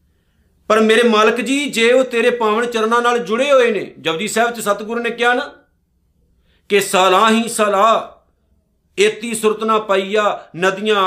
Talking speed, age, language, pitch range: 150 wpm, 50-69, Punjabi, 180-230 Hz